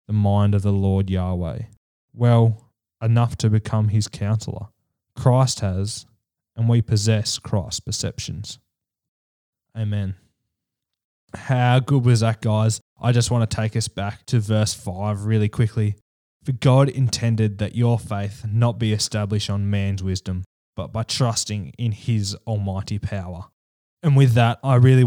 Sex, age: male, 10-29